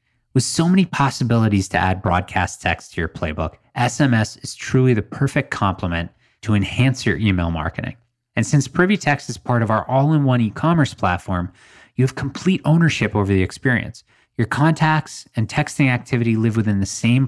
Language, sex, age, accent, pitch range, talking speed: English, male, 20-39, American, 100-135 Hz, 170 wpm